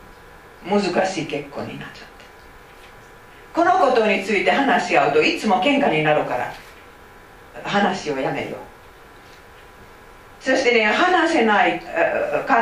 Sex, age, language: female, 50-69, Japanese